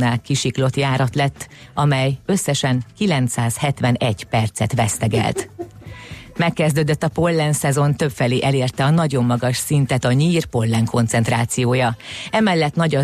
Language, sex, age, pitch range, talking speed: Hungarian, female, 30-49, 120-145 Hz, 115 wpm